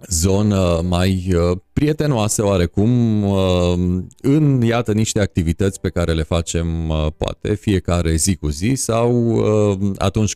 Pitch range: 85-105 Hz